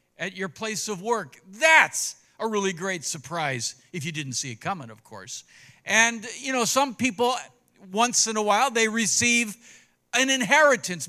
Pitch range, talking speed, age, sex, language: 180-240 Hz, 170 wpm, 60-79, male, English